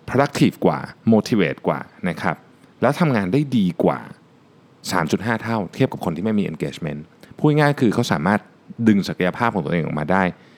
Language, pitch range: Thai, 85-130 Hz